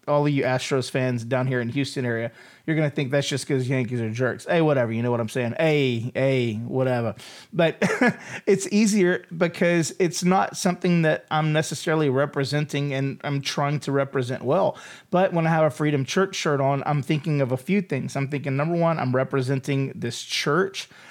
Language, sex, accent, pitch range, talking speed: English, male, American, 135-175 Hz, 200 wpm